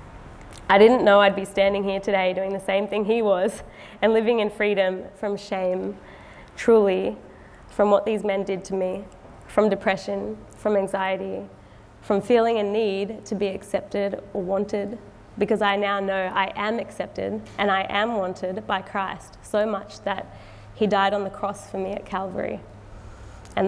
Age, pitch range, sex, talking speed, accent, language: 20-39, 190-215 Hz, female, 170 wpm, Australian, English